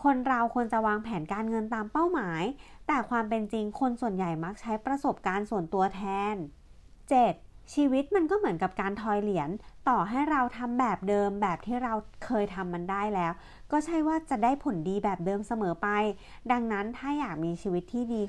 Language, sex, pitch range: Thai, female, 195-255 Hz